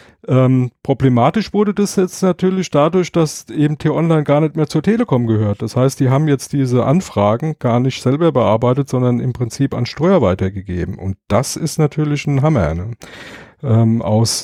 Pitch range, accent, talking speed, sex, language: 115-135 Hz, German, 165 wpm, male, German